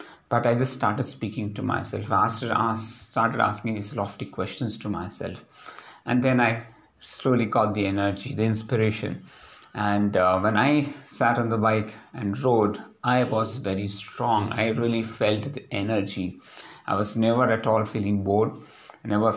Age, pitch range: 50-69, 105-125 Hz